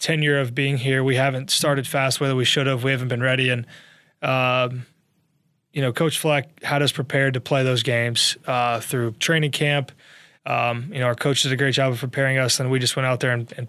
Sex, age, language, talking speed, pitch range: male, 20-39, English, 230 wpm, 125-145 Hz